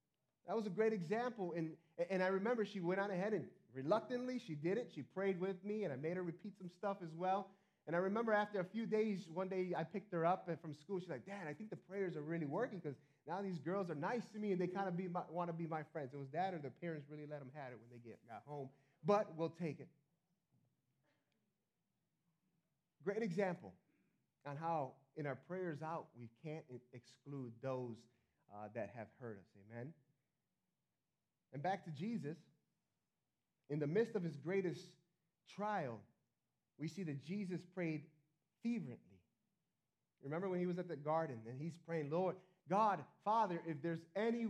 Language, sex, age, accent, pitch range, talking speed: English, male, 30-49, American, 155-205 Hz, 195 wpm